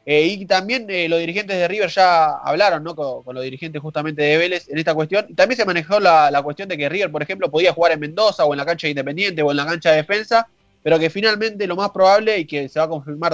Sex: male